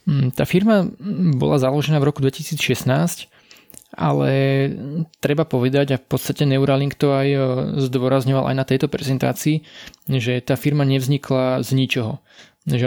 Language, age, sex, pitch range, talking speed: Slovak, 20-39, male, 125-140 Hz, 130 wpm